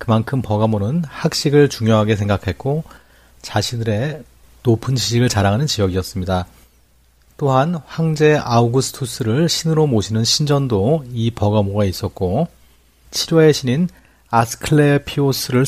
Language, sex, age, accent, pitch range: Korean, male, 40-59, native, 95-135 Hz